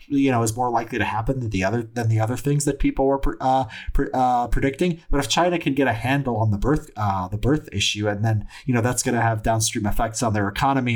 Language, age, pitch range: English, 30-49, 105-135 Hz